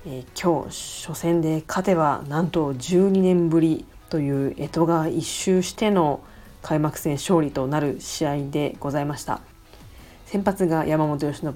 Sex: female